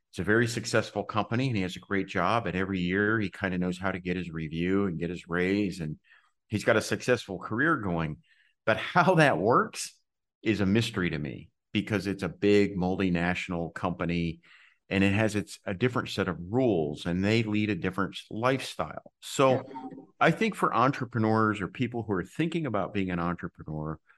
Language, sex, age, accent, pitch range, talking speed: English, male, 50-69, American, 90-110 Hz, 195 wpm